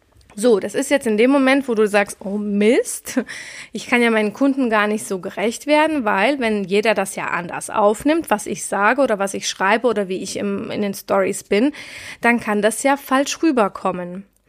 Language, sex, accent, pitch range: German, female, German, 205-270 Hz